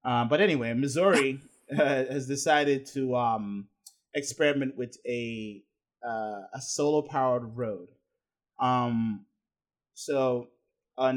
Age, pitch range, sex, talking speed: 20-39, 120-150 Hz, male, 100 wpm